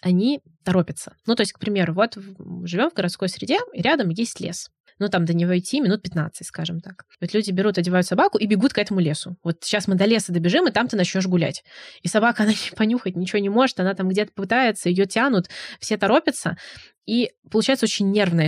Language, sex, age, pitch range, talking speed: Russian, female, 20-39, 170-220 Hz, 215 wpm